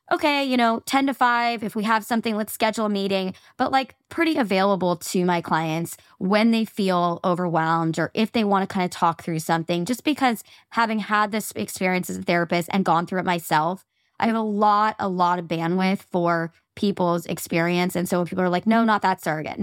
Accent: American